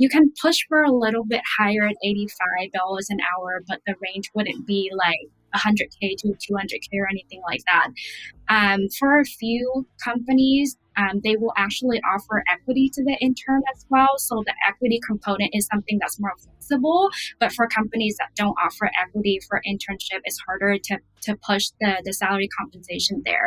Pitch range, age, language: 200-235 Hz, 10-29, English